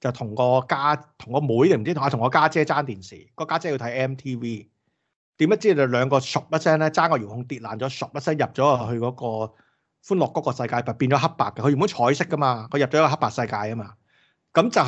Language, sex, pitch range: Chinese, male, 120-155 Hz